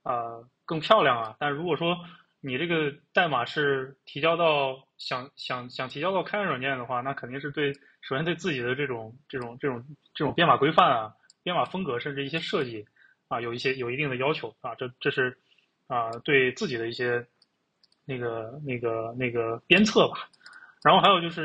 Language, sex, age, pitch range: Chinese, male, 20-39, 125-155 Hz